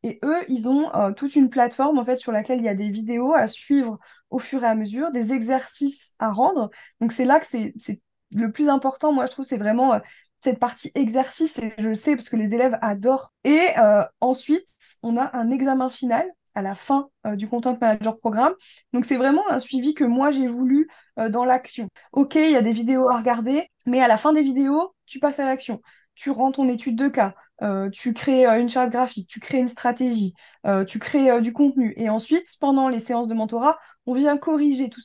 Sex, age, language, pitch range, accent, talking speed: female, 20-39, French, 230-275 Hz, French, 230 wpm